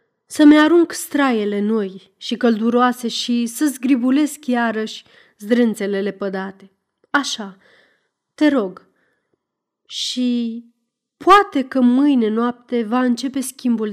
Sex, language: female, Romanian